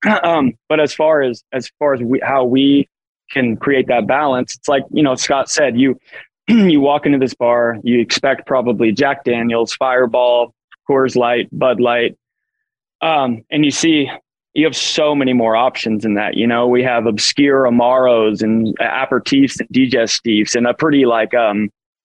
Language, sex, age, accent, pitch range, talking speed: English, male, 20-39, American, 120-140 Hz, 175 wpm